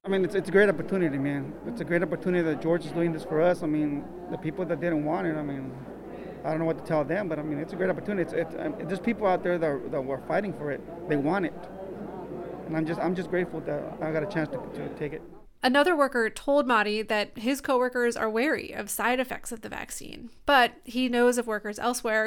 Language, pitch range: English, 190-240 Hz